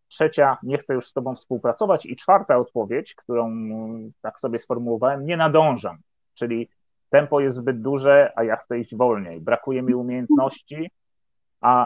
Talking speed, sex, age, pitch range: 150 wpm, male, 30-49, 115-135 Hz